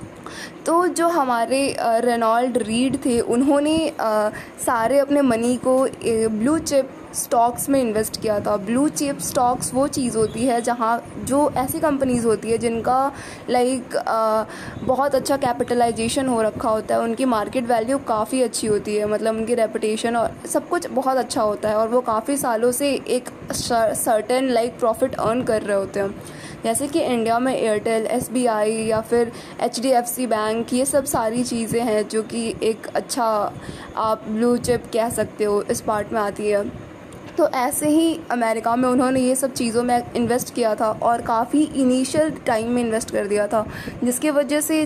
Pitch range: 220-265 Hz